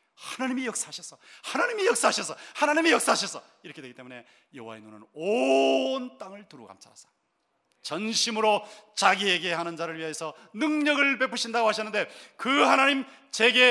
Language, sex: Korean, male